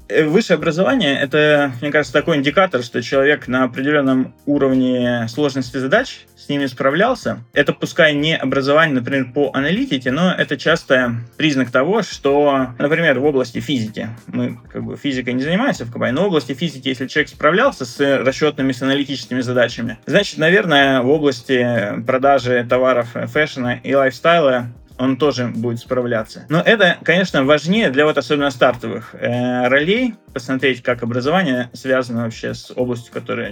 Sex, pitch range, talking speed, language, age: male, 125-150 Hz, 150 wpm, Russian, 20-39